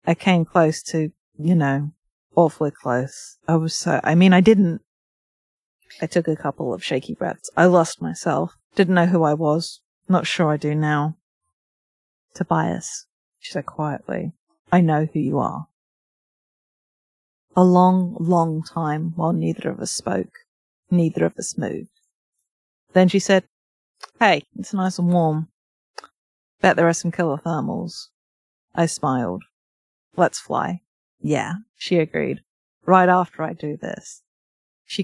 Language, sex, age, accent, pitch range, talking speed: English, female, 30-49, British, 150-180 Hz, 140 wpm